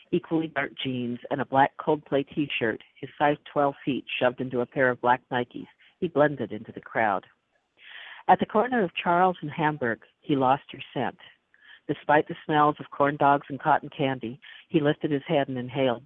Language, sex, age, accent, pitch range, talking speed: English, female, 50-69, American, 125-155 Hz, 185 wpm